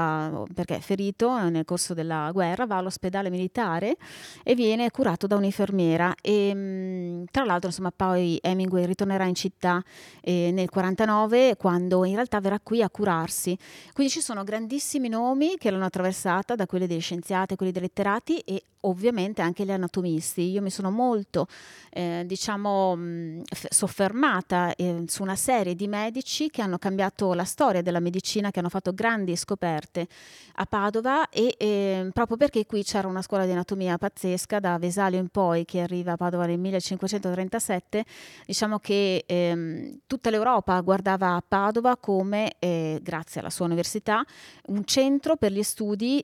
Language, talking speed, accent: Italian, 150 wpm, native